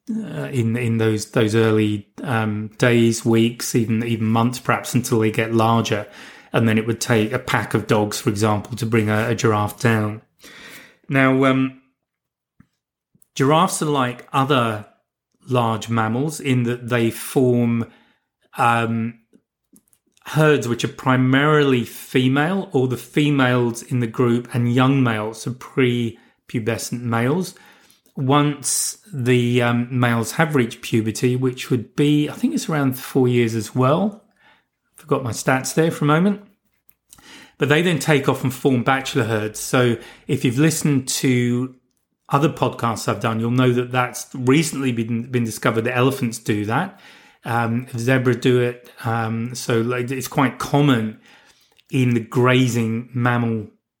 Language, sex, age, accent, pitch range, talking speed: English, male, 30-49, British, 115-135 Hz, 150 wpm